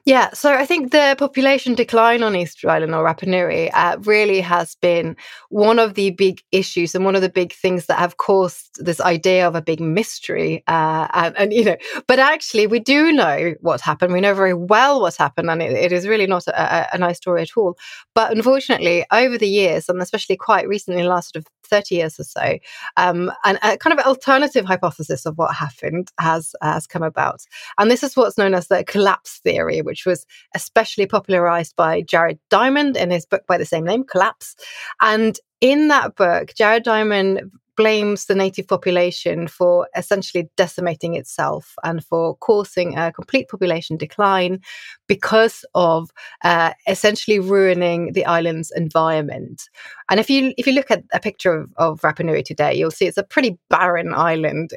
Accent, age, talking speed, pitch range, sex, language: British, 20-39, 190 wpm, 170-220 Hz, female, English